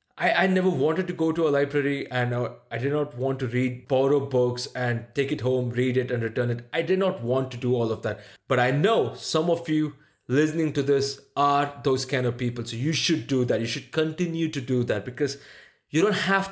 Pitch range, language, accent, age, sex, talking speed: 120-150 Hz, English, Indian, 30-49, male, 240 wpm